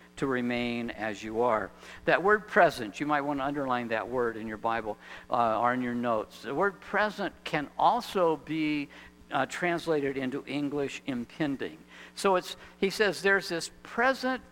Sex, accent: male, American